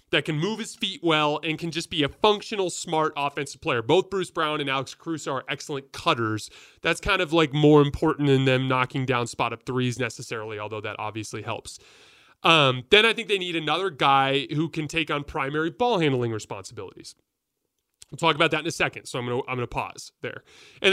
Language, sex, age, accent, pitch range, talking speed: English, male, 30-49, American, 140-195 Hz, 205 wpm